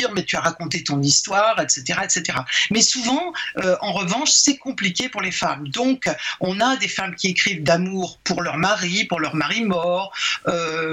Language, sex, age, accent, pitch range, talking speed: French, female, 60-79, French, 160-215 Hz, 200 wpm